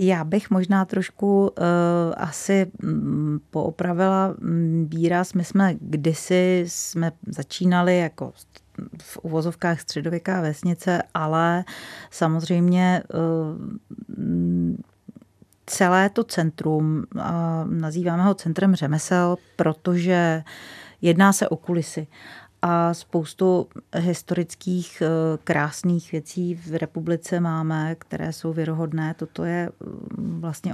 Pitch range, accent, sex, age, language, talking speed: 160-185 Hz, native, female, 40-59, Czech, 85 wpm